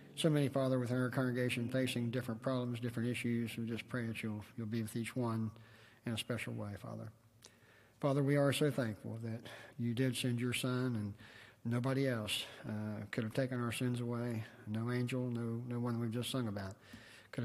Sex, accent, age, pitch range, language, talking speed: male, American, 40-59, 110-125 Hz, English, 195 wpm